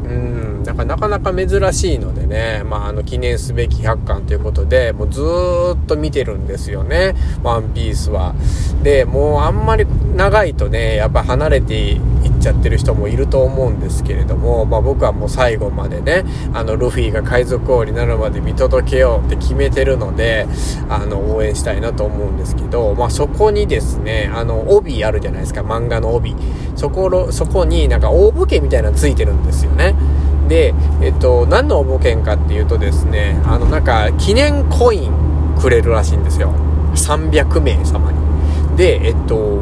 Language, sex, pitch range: Japanese, male, 70-105 Hz